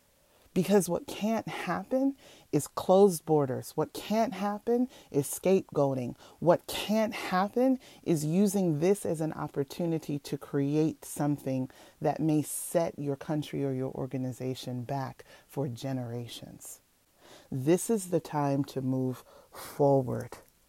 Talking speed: 120 wpm